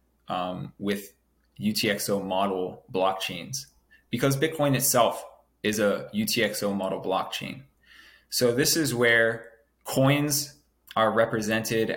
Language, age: English, 20-39